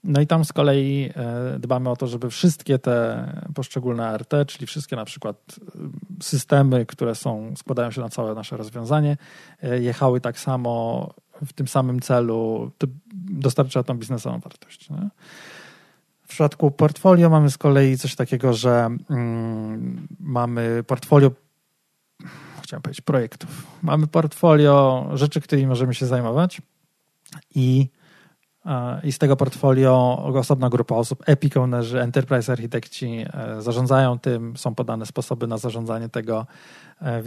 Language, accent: Polish, native